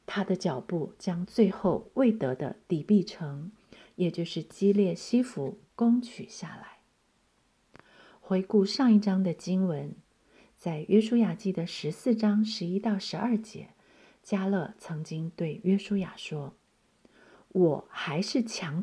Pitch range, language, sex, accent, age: 170-220 Hz, Chinese, female, native, 50-69